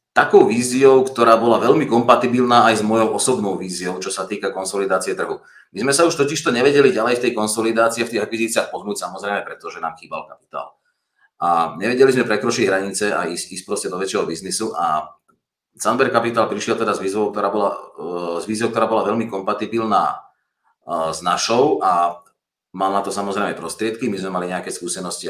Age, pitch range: 30-49, 85-130 Hz